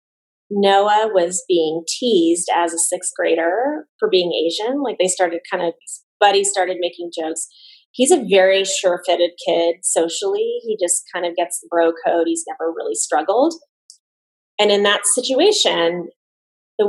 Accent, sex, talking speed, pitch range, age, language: American, female, 155 wpm, 180-280 Hz, 20-39, English